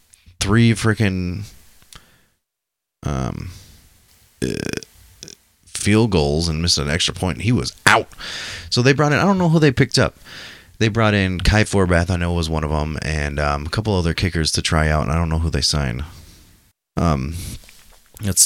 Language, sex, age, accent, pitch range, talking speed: English, male, 30-49, American, 80-100 Hz, 175 wpm